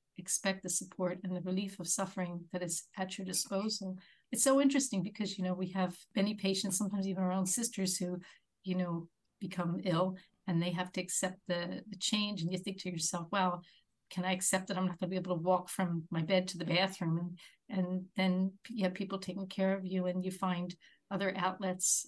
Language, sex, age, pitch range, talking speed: English, female, 50-69, 180-205 Hz, 220 wpm